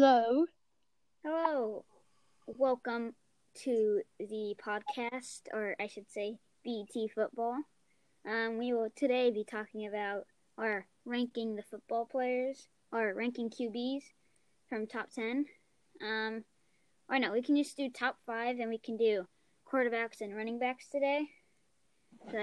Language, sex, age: English, female, 20-39